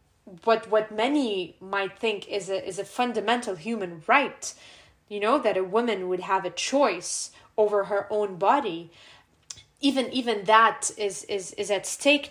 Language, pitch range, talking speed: English, 190-235 Hz, 160 wpm